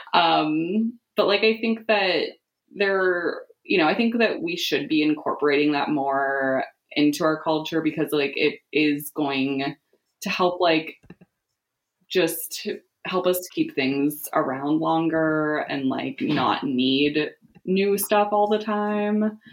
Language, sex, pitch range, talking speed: English, female, 150-185 Hz, 145 wpm